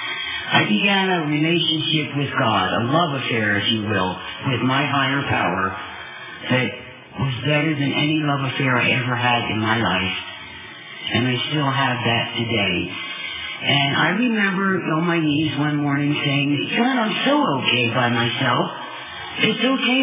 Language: English